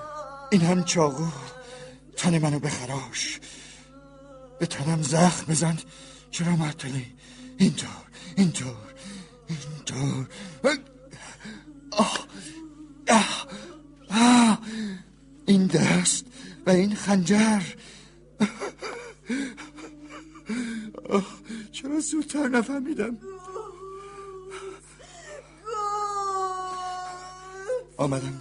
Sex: male